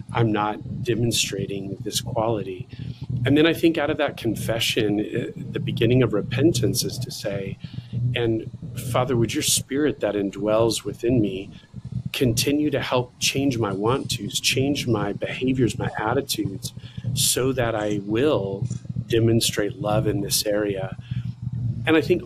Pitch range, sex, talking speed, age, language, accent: 110-135 Hz, male, 145 wpm, 40-59, English, American